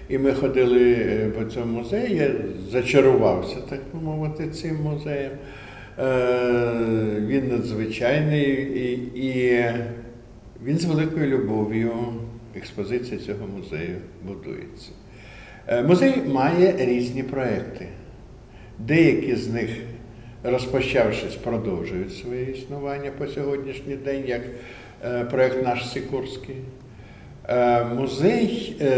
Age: 60-79